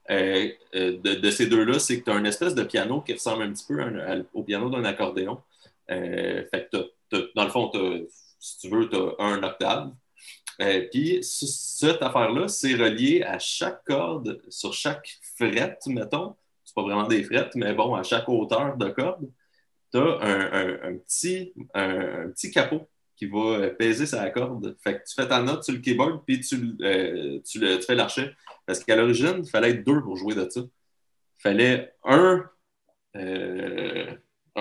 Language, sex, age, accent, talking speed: French, male, 30-49, Canadian, 195 wpm